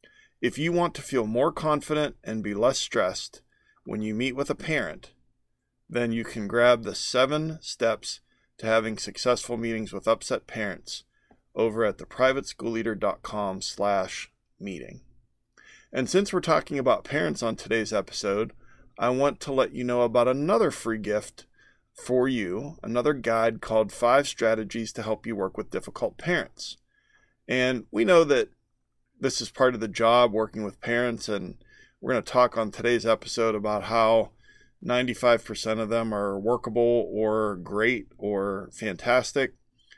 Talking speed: 150 wpm